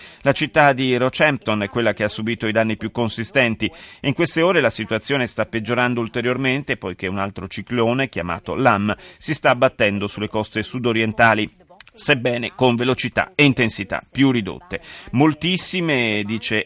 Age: 30-49